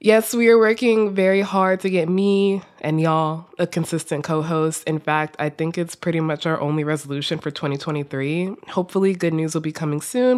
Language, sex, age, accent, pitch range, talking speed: English, female, 20-39, American, 155-200 Hz, 190 wpm